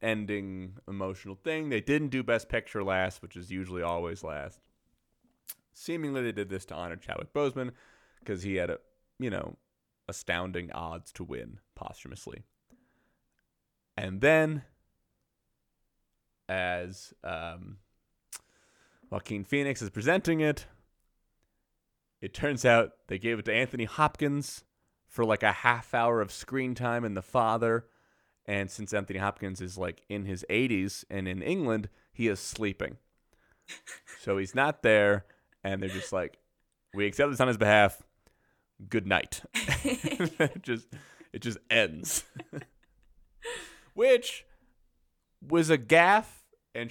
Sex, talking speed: male, 130 wpm